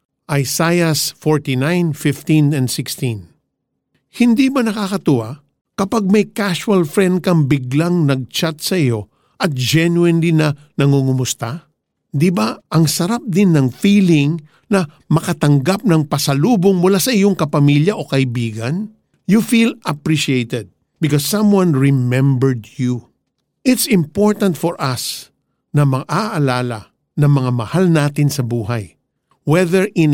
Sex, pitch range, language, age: male, 135-175 Hz, Filipino, 50-69